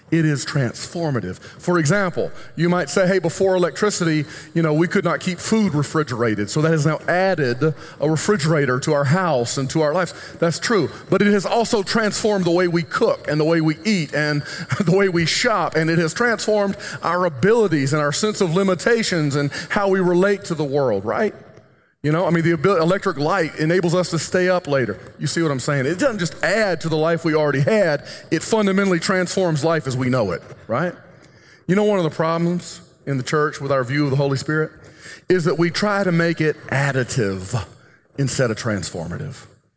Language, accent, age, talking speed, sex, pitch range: English, American, 40-59, 205 wpm, male, 145-190 Hz